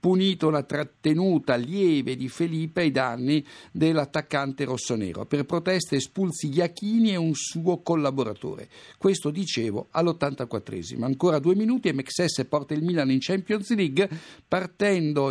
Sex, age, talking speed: male, 50-69, 130 wpm